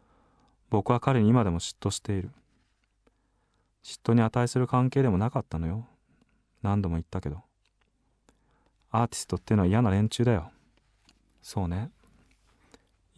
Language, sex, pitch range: Japanese, male, 90-120 Hz